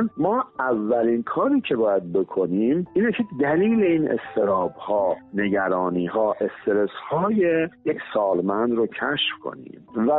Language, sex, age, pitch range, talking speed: Persian, male, 50-69, 110-175 Hz, 110 wpm